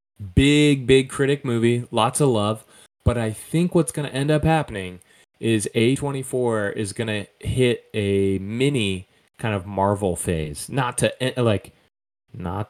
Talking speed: 150 wpm